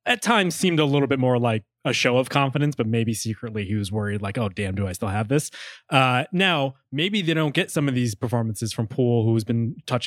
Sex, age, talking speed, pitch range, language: male, 20-39, 250 wpm, 120-150 Hz, English